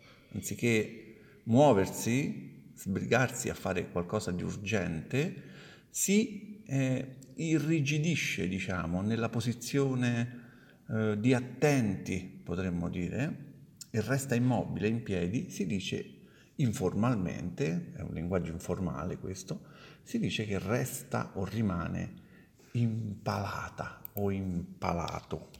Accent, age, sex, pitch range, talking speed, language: native, 50-69, male, 95-115 Hz, 95 wpm, Italian